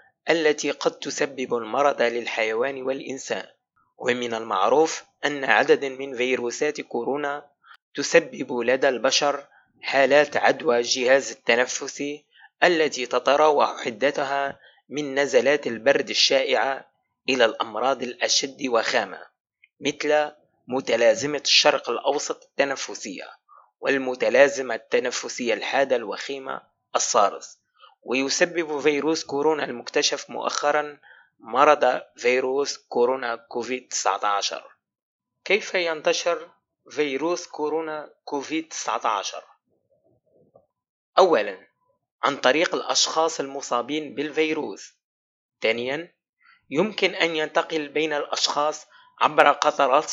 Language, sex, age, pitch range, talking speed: Arabic, male, 30-49, 130-155 Hz, 85 wpm